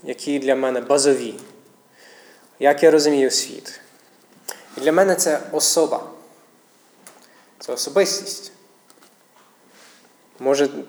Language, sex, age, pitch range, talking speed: Ukrainian, male, 20-39, 130-175 Hz, 90 wpm